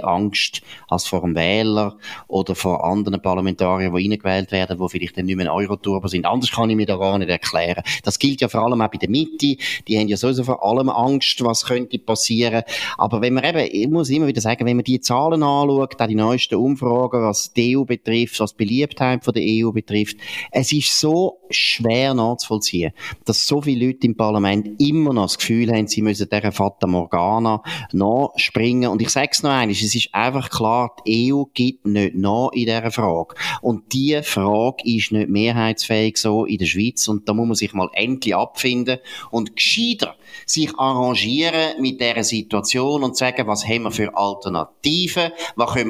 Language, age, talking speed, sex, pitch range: German, 30-49, 195 wpm, male, 105-130 Hz